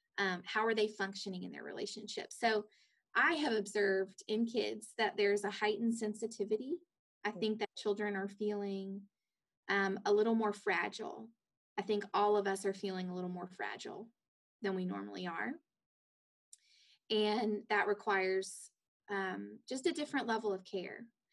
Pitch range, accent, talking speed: 195-225 Hz, American, 155 wpm